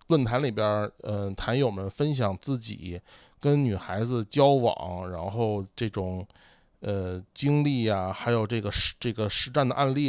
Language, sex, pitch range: Chinese, male, 100-140 Hz